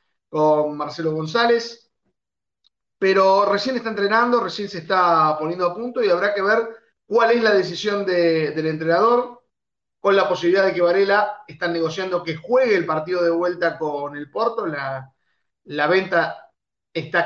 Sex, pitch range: male, 165-205 Hz